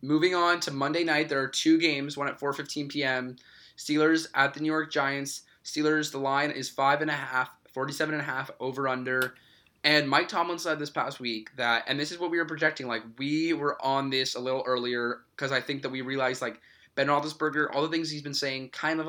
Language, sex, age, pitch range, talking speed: English, male, 20-39, 120-145 Hz, 210 wpm